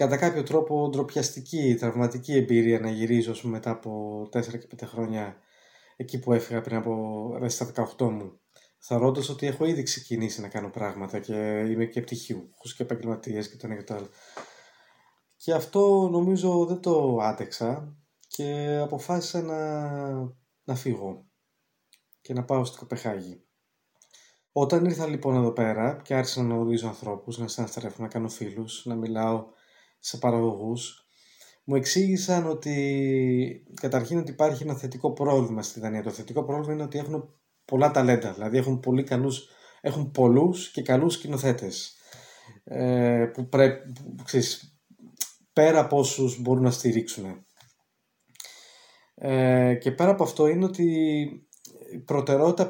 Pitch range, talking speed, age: 115-150 Hz, 140 wpm, 20-39